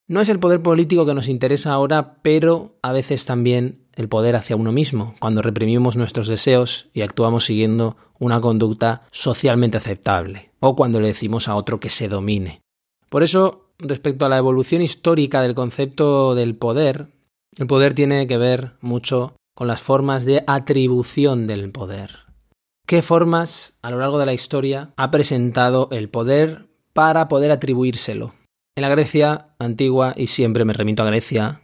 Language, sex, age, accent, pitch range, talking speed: Spanish, male, 20-39, Spanish, 110-140 Hz, 165 wpm